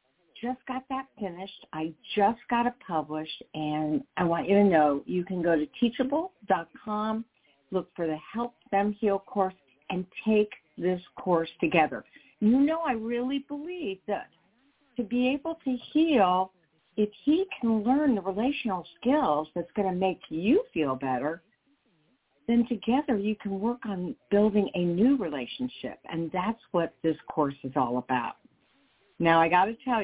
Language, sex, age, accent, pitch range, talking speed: English, female, 50-69, American, 170-245 Hz, 160 wpm